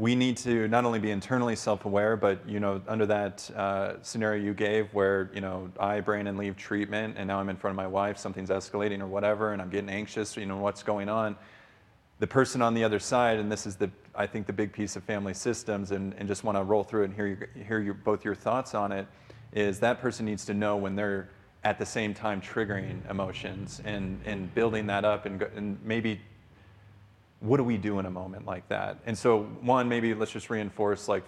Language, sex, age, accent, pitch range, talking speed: English, male, 30-49, American, 100-110 Hz, 230 wpm